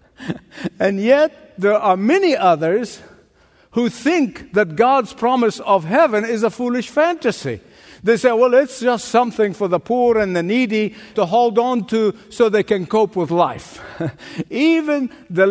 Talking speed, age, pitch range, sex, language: 160 wpm, 60-79, 200-255 Hz, male, English